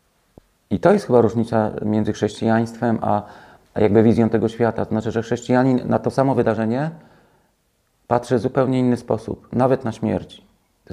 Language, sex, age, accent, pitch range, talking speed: Polish, male, 40-59, native, 105-120 Hz, 160 wpm